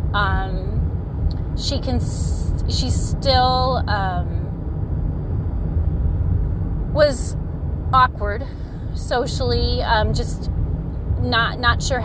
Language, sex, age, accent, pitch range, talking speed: English, female, 30-49, American, 80-90 Hz, 70 wpm